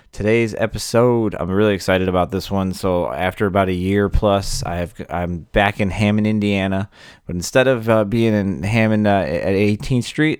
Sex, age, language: male, 30-49, English